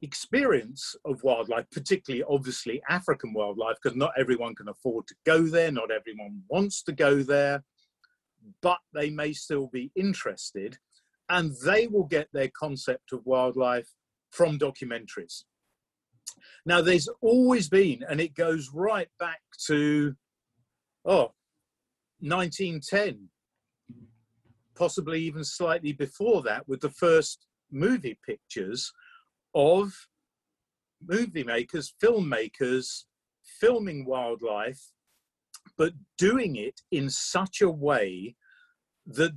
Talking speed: 110 wpm